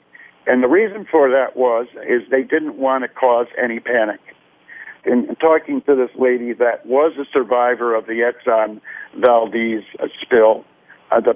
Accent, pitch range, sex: American, 120-145 Hz, male